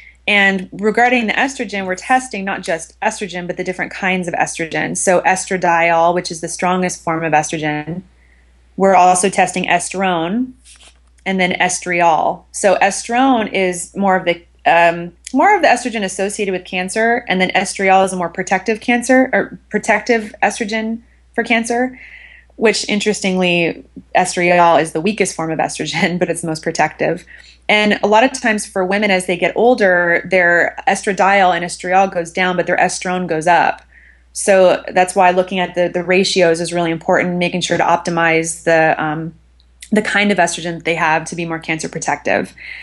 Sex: female